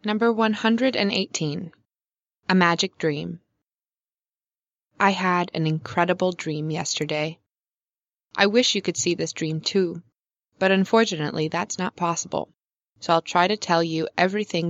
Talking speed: 140 wpm